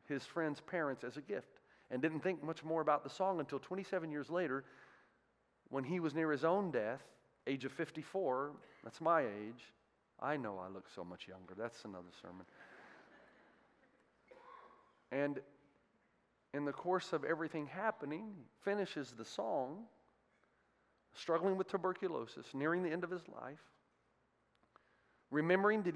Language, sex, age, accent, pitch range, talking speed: English, male, 40-59, American, 145-170 Hz, 145 wpm